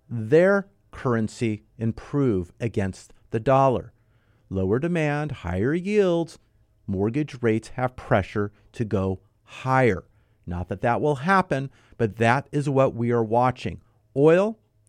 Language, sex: English, male